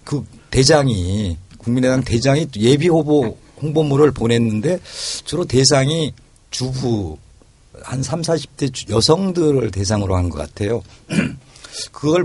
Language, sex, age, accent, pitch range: Korean, male, 40-59, native, 105-150 Hz